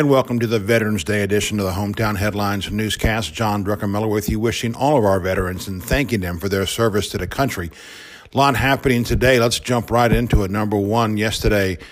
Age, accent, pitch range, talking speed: 50-69, American, 100-120 Hz, 215 wpm